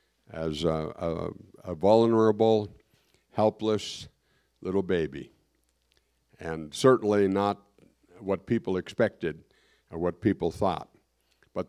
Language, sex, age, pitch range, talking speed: English, male, 60-79, 90-115 Hz, 90 wpm